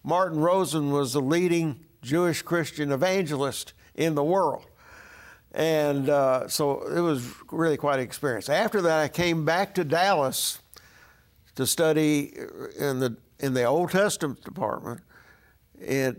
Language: English